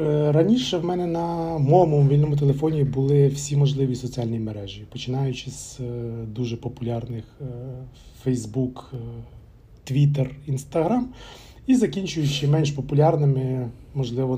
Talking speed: 100 wpm